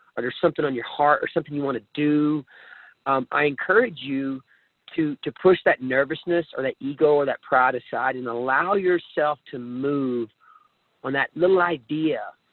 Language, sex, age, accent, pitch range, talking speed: English, male, 40-59, American, 135-160 Hz, 175 wpm